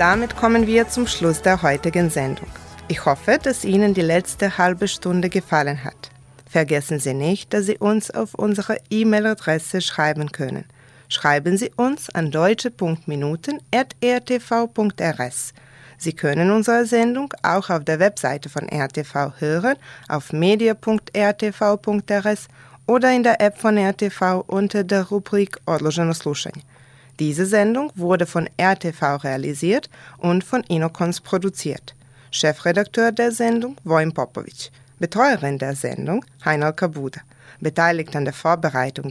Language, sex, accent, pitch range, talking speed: German, female, German, 145-205 Hz, 125 wpm